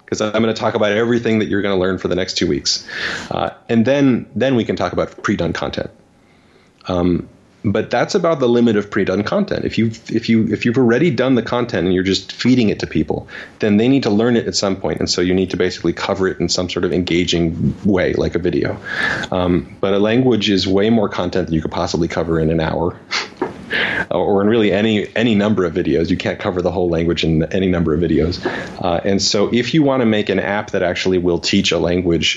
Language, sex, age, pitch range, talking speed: English, male, 30-49, 90-110 Hz, 245 wpm